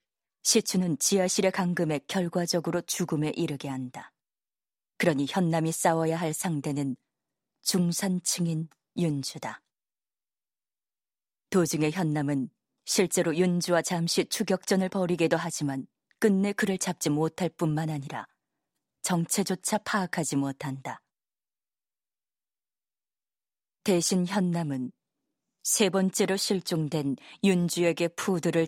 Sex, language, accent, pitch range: female, Korean, native, 155-190 Hz